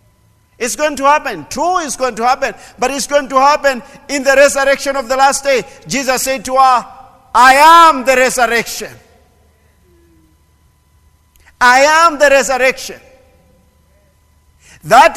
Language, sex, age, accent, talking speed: English, male, 50-69, South African, 135 wpm